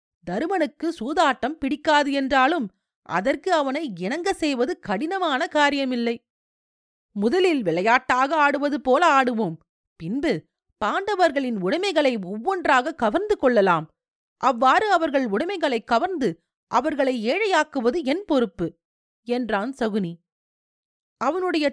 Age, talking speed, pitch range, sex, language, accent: 40-59, 90 wpm, 225-300 Hz, female, Tamil, native